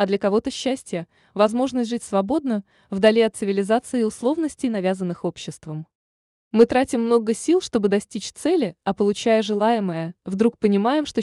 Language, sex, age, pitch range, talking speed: Russian, female, 20-39, 190-255 Hz, 145 wpm